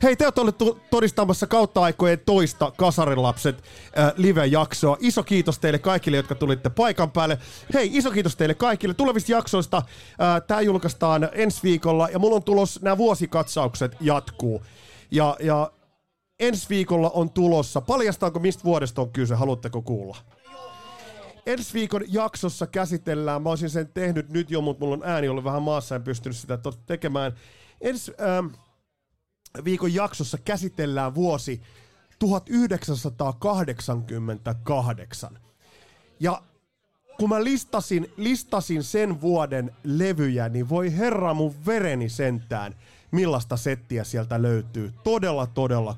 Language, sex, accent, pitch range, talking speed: Finnish, male, native, 130-195 Hz, 130 wpm